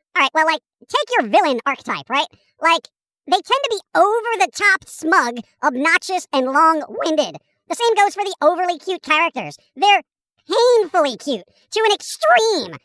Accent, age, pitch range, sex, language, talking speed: American, 40-59, 295-410 Hz, male, English, 150 wpm